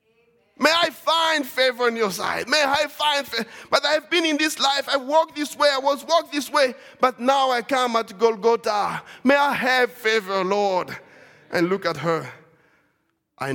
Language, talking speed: English, 185 wpm